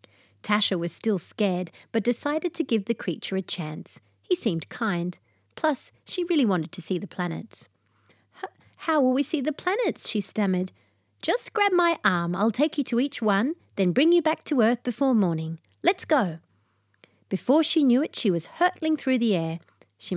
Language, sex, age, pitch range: English, female, 30-49, 175-255 Hz